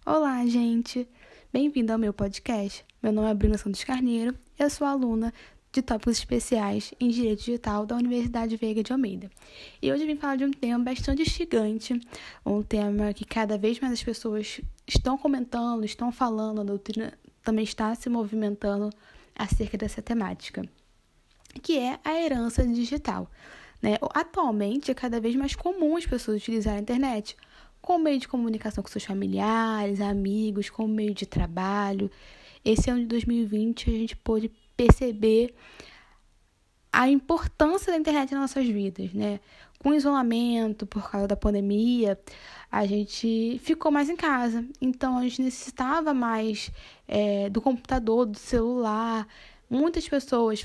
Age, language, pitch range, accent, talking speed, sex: 10-29, Portuguese, 215-265 Hz, Brazilian, 150 wpm, female